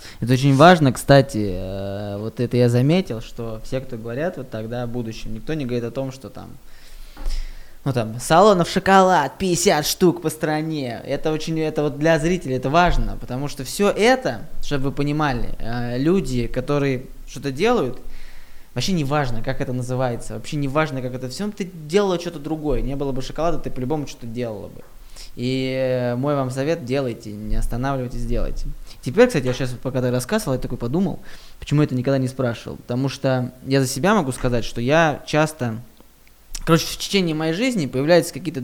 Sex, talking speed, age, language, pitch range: male, 180 wpm, 20-39, Russian, 125-155 Hz